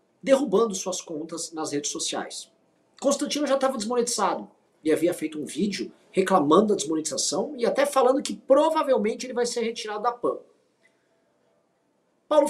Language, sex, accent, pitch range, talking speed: Portuguese, male, Brazilian, 165-245 Hz, 145 wpm